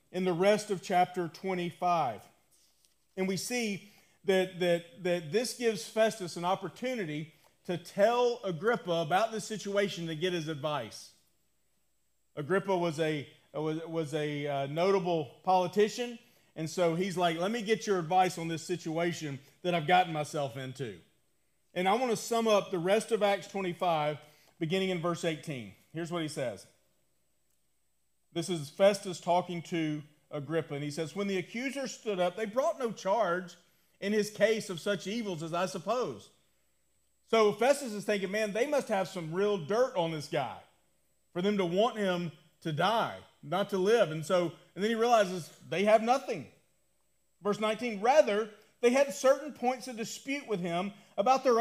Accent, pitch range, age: American, 165-220 Hz, 40-59